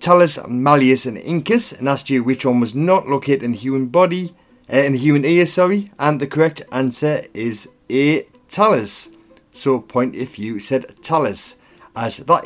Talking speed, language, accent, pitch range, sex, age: 180 wpm, English, British, 120-165 Hz, male, 30-49